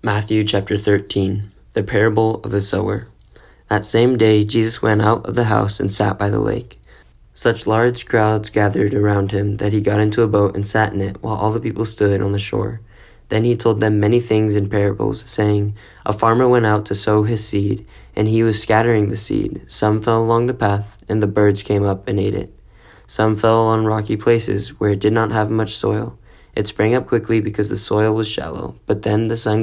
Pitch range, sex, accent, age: 100-115 Hz, male, American, 10-29